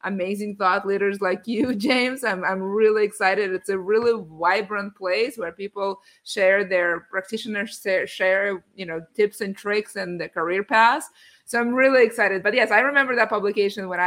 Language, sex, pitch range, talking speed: English, female, 175-210 Hz, 180 wpm